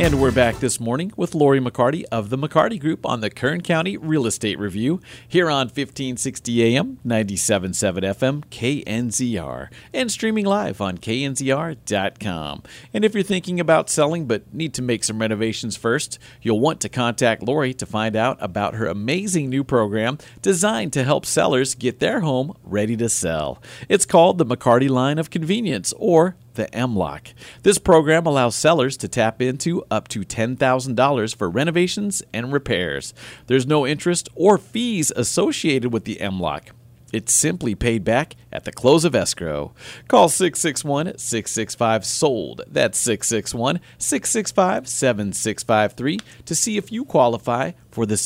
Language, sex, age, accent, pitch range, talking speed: English, male, 50-69, American, 115-160 Hz, 150 wpm